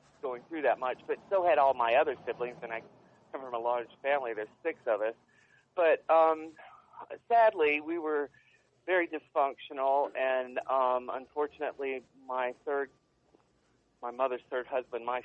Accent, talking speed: American, 155 wpm